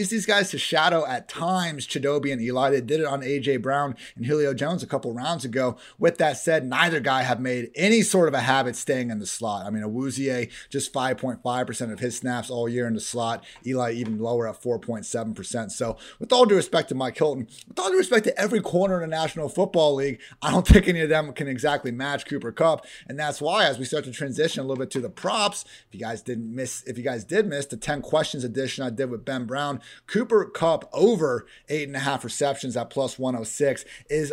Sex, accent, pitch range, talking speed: male, American, 130-175 Hz, 230 wpm